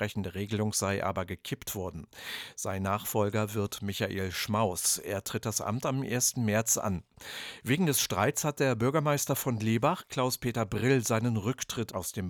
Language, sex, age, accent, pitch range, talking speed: English, male, 50-69, German, 100-130 Hz, 165 wpm